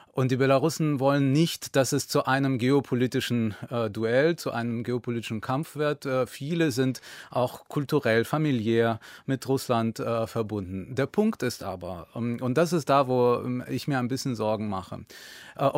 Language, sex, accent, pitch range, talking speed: German, male, German, 125-170 Hz, 165 wpm